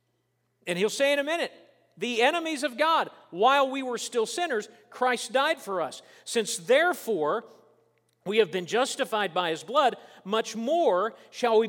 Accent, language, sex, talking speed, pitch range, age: American, English, male, 165 wpm, 210-300 Hz, 50-69